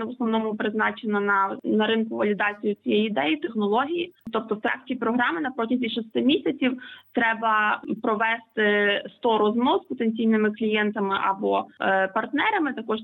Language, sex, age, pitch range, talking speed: Ukrainian, female, 20-39, 210-245 Hz, 135 wpm